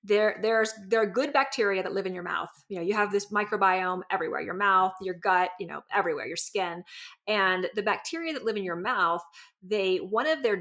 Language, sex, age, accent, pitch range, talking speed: English, female, 30-49, American, 180-230 Hz, 220 wpm